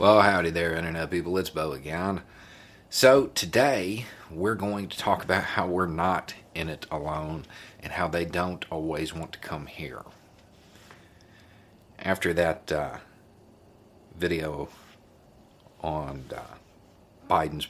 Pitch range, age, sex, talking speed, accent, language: 80-105 Hz, 50-69, male, 125 wpm, American, English